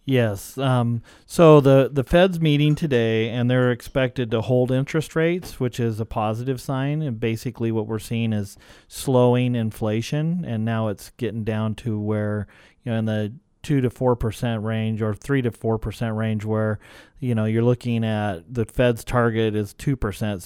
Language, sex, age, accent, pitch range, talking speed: English, male, 40-59, American, 105-125 Hz, 175 wpm